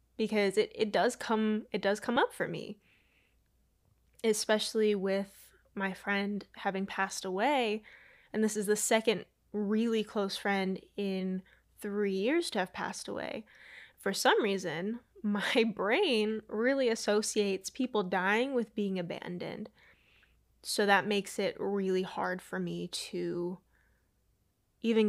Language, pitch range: English, 190-220 Hz